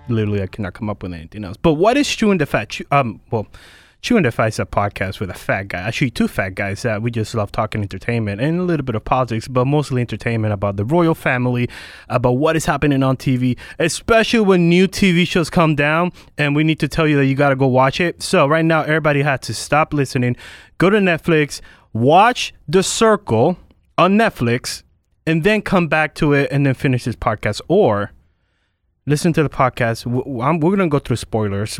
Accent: American